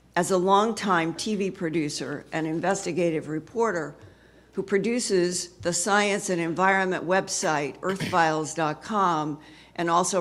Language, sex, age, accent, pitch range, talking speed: English, female, 50-69, American, 165-195 Hz, 105 wpm